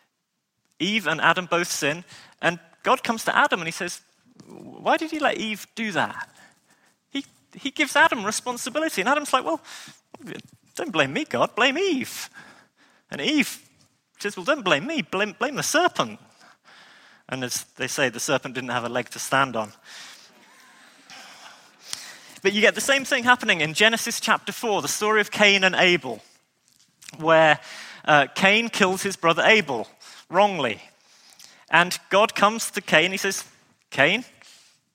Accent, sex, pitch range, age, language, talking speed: British, male, 165-245 Hz, 30-49, English, 160 wpm